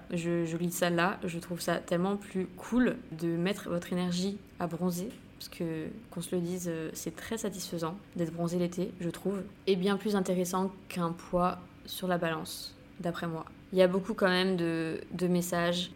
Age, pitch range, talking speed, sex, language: 20-39, 170-190 Hz, 190 wpm, female, French